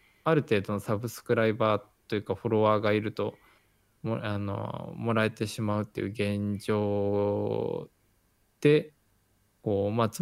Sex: male